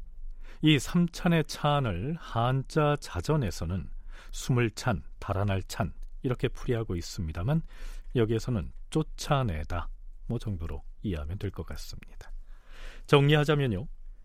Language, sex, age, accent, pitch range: Korean, male, 40-59, native, 90-150 Hz